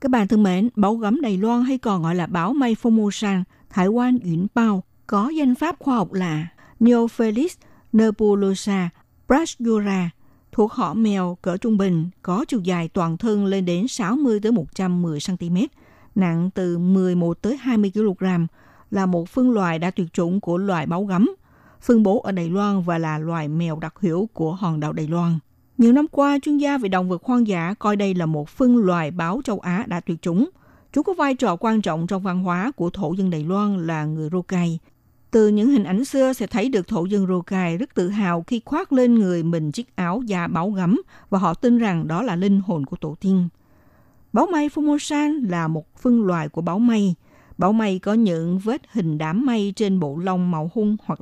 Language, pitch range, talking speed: Vietnamese, 170-230 Hz, 205 wpm